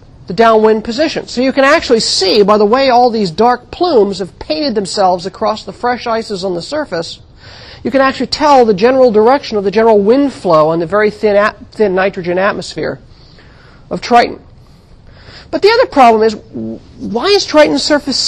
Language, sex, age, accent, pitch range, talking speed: English, male, 50-69, American, 200-285 Hz, 180 wpm